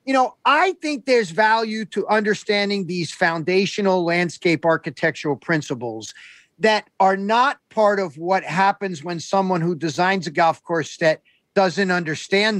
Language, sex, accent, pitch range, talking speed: English, male, American, 170-245 Hz, 145 wpm